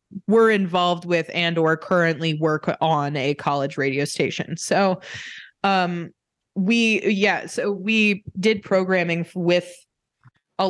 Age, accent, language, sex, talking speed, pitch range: 20-39, American, English, female, 125 wpm, 160-200 Hz